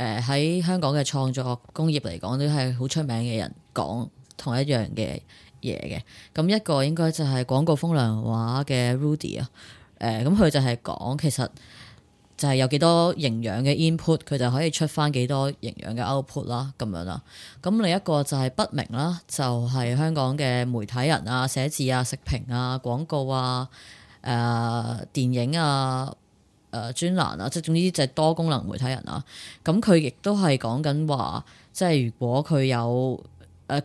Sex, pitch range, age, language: female, 125-165 Hz, 20-39, Chinese